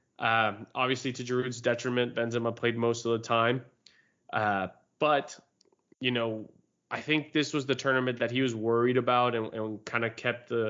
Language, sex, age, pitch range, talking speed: English, male, 20-39, 115-130 Hz, 175 wpm